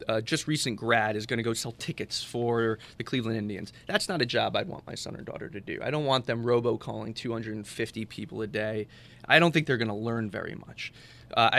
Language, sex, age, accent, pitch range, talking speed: English, male, 20-39, American, 115-145 Hz, 235 wpm